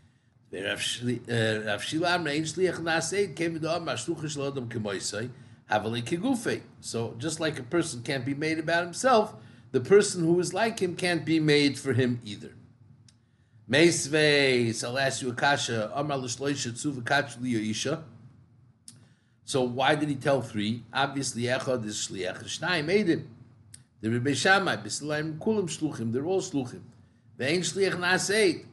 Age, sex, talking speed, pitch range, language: 50-69, male, 75 wpm, 120-160 Hz, English